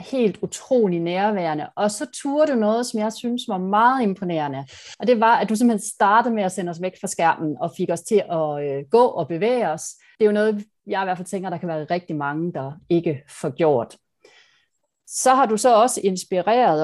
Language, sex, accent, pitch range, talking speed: Danish, female, native, 170-225 Hz, 220 wpm